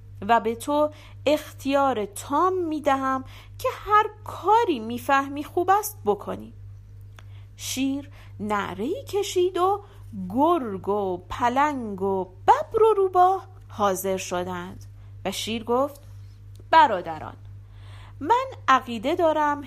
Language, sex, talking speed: Persian, female, 100 wpm